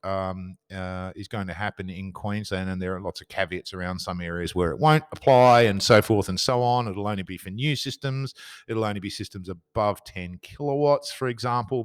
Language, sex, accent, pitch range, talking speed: English, male, Australian, 95-115 Hz, 215 wpm